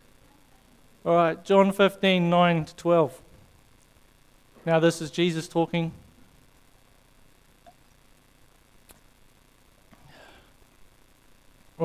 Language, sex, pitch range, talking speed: English, male, 145-175 Hz, 65 wpm